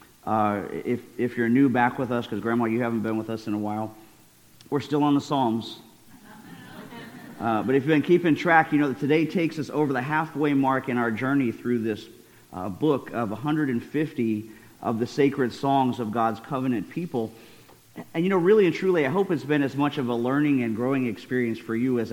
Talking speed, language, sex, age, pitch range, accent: 210 wpm, English, male, 50-69, 115-145 Hz, American